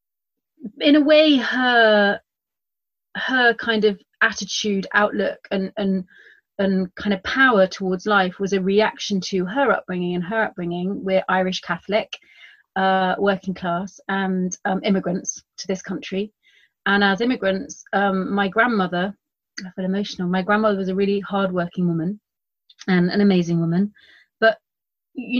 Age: 30-49